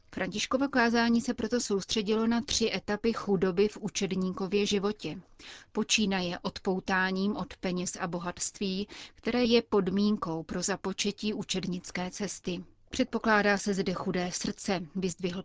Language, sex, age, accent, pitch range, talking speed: Czech, female, 30-49, native, 185-210 Hz, 125 wpm